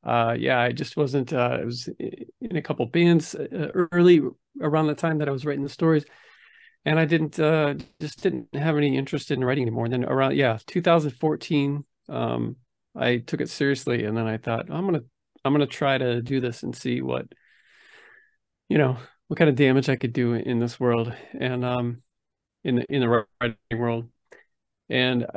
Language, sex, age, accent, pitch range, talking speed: English, male, 40-59, American, 120-155 Hz, 190 wpm